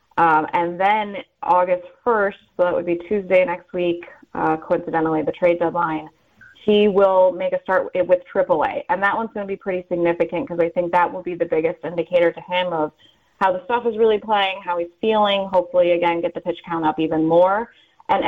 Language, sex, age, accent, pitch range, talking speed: English, female, 30-49, American, 175-210 Hz, 210 wpm